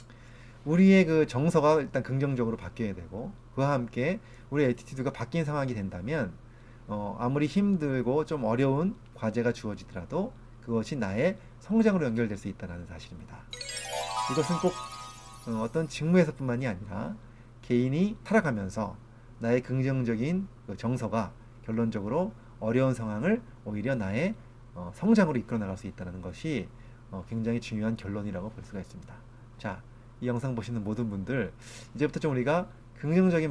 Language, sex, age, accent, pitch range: Korean, male, 30-49, native, 110-130 Hz